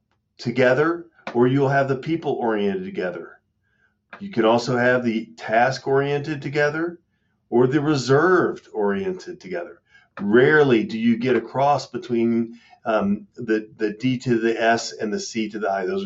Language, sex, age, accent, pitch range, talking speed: English, male, 40-59, American, 115-170 Hz, 140 wpm